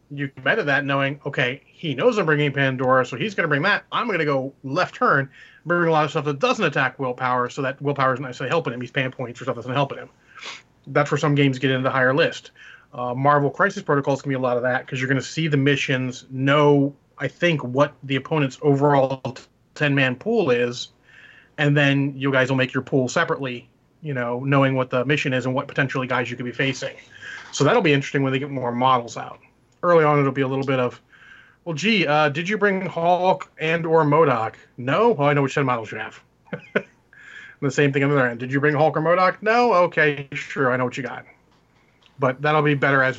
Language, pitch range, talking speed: English, 130-150 Hz, 245 wpm